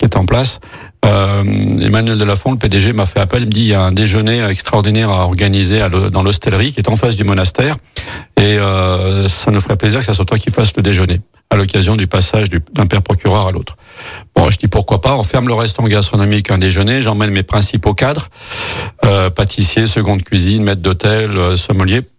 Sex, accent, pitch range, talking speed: male, French, 100-115 Hz, 220 wpm